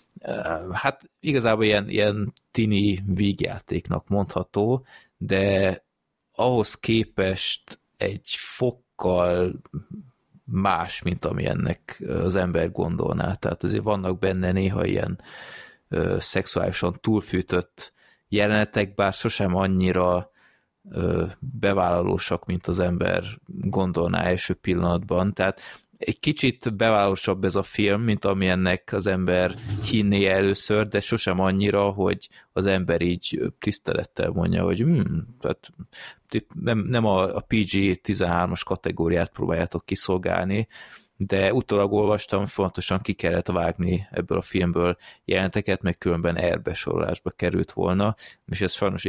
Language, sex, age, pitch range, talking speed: Hungarian, male, 20-39, 90-105 Hz, 110 wpm